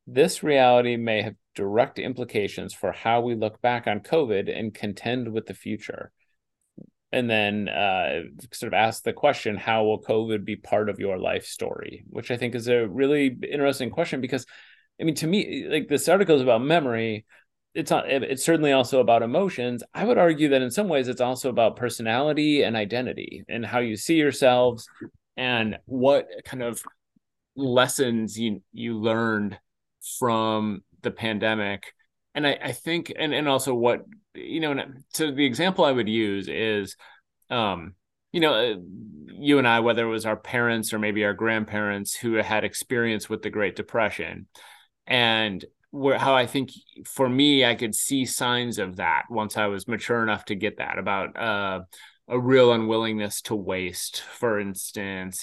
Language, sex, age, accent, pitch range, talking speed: English, male, 30-49, American, 105-130 Hz, 175 wpm